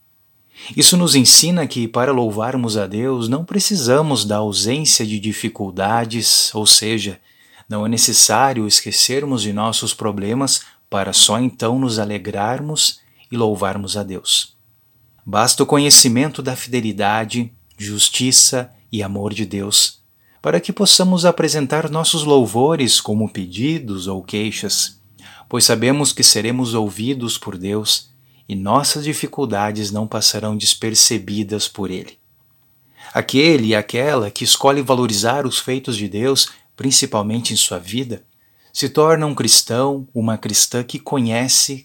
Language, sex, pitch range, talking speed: Portuguese, male, 105-135 Hz, 130 wpm